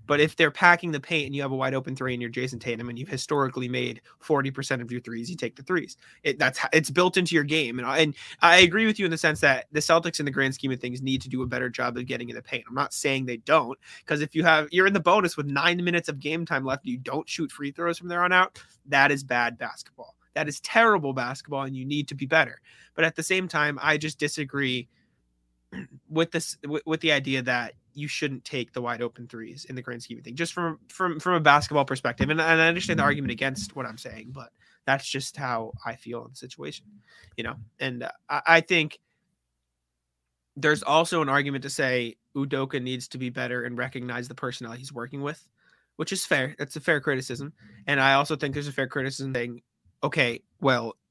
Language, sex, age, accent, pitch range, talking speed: English, male, 20-39, American, 125-160 Hz, 240 wpm